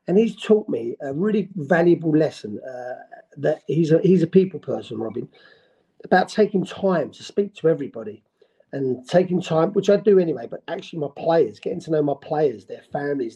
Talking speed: 190 wpm